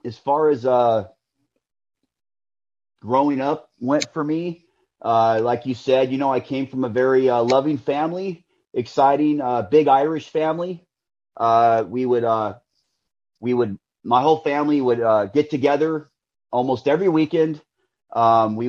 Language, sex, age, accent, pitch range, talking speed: English, male, 30-49, American, 115-145 Hz, 150 wpm